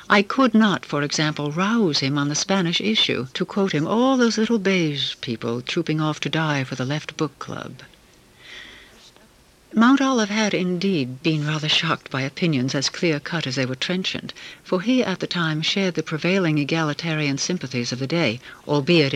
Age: 60-79